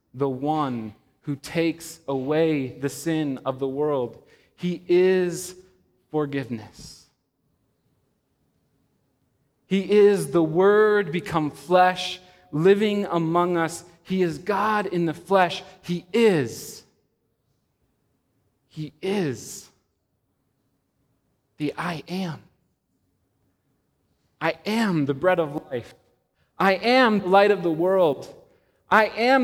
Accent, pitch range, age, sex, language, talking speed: American, 145-200 Hz, 30-49, male, English, 100 wpm